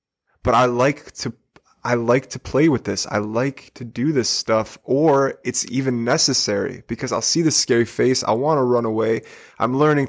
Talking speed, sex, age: 195 wpm, male, 20-39